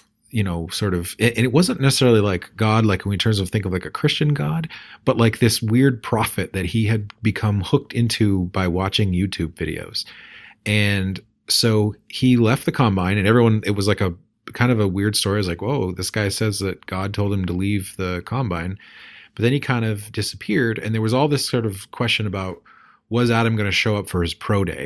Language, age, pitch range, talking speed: English, 30-49, 95-115 Hz, 220 wpm